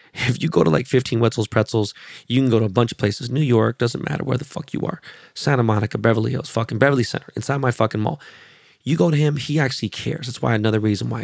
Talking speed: 255 wpm